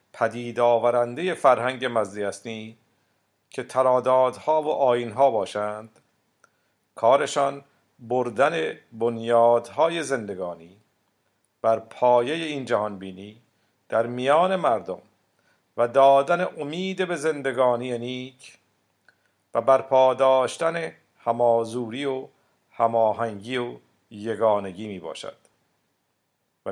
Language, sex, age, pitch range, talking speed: Persian, male, 50-69, 110-135 Hz, 85 wpm